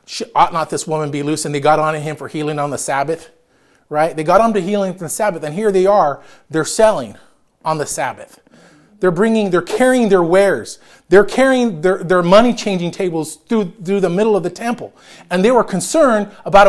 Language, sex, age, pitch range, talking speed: English, male, 40-59, 175-245 Hz, 210 wpm